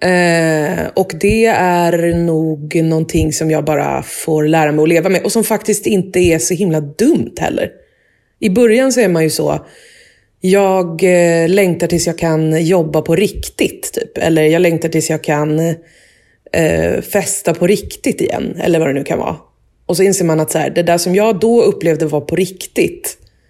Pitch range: 160-215 Hz